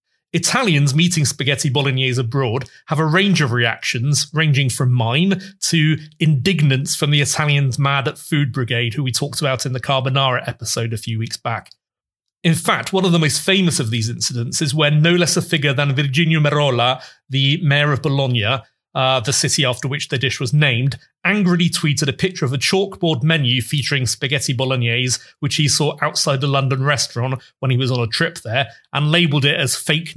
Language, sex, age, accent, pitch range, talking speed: English, male, 30-49, British, 125-160 Hz, 190 wpm